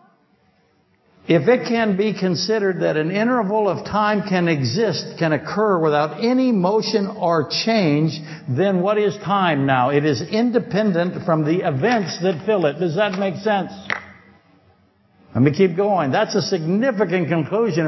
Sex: male